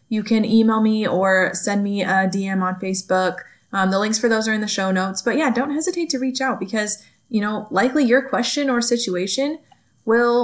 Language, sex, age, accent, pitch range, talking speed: English, female, 20-39, American, 190-240 Hz, 215 wpm